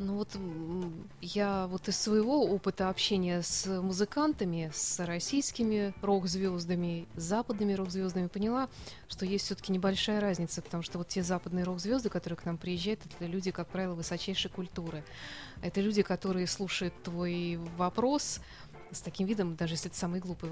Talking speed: 160 wpm